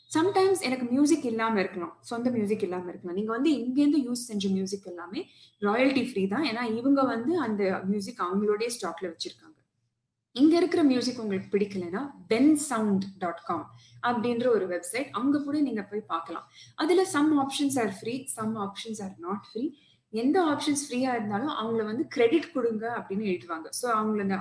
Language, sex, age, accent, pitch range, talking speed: Tamil, female, 20-39, native, 195-260 Hz, 165 wpm